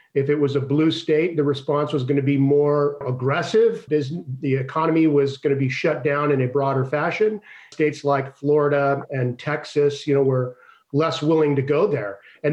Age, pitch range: 40-59, 140-170 Hz